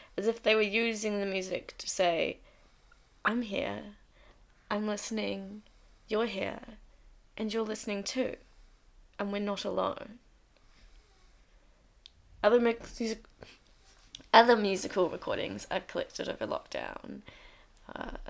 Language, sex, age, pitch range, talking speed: English, female, 20-39, 180-225 Hz, 110 wpm